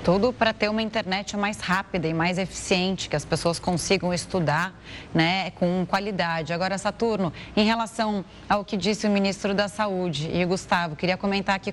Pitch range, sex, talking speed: 190-235 Hz, female, 180 wpm